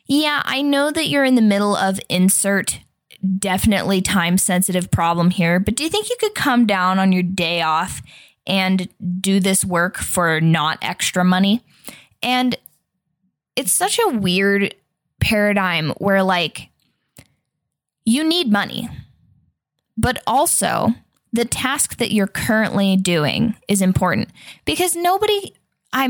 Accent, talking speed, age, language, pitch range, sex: American, 135 wpm, 10-29, English, 180-210 Hz, female